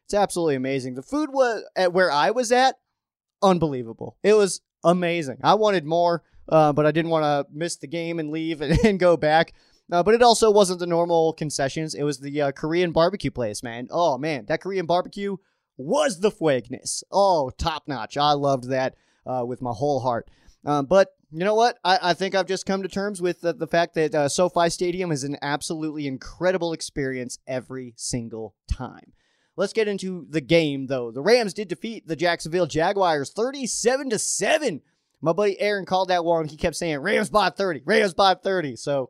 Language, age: English, 20-39